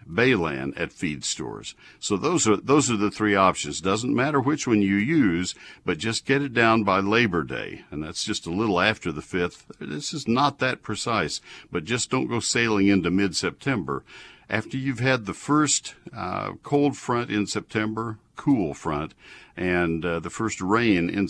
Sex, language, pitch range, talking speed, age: male, English, 90-115 Hz, 180 wpm, 60-79